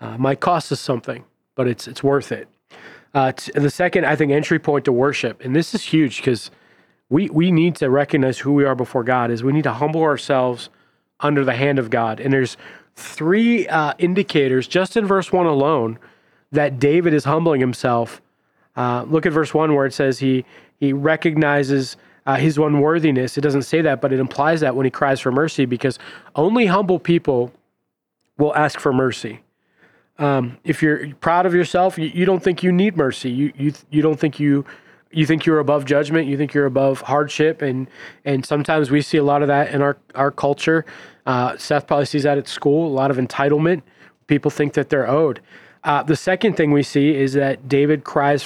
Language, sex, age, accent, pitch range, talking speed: English, male, 30-49, American, 135-160 Hz, 205 wpm